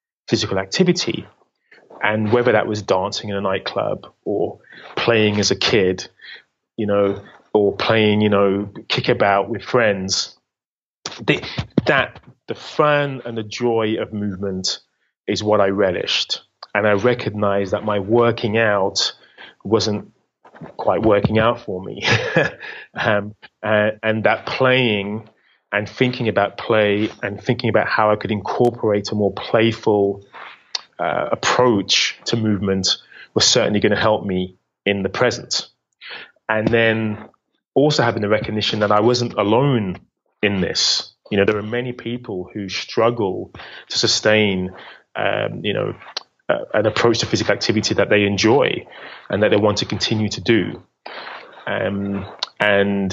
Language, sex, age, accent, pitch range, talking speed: English, male, 30-49, British, 100-115 Hz, 140 wpm